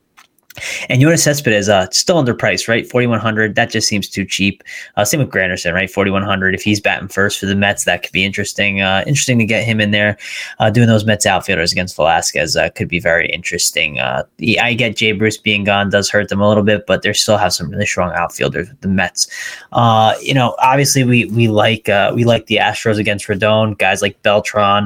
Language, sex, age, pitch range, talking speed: English, male, 20-39, 95-115 Hz, 225 wpm